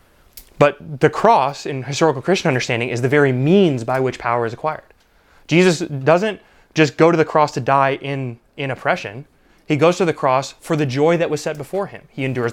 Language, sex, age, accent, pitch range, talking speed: English, male, 20-39, American, 135-170 Hz, 205 wpm